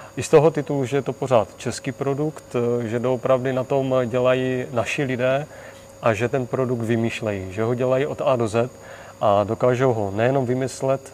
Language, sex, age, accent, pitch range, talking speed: Czech, male, 40-59, native, 115-135 Hz, 190 wpm